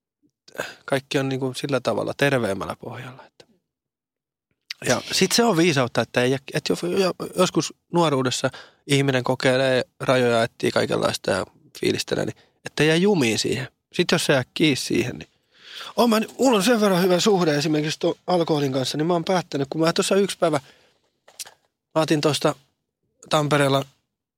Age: 20-39